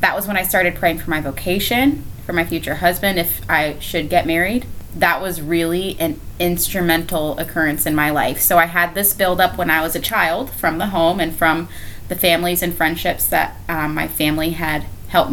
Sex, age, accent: female, 20-39, American